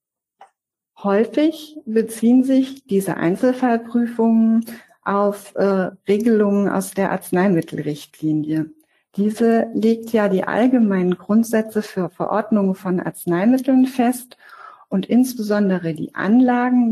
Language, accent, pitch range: German, German, 180-220 Hz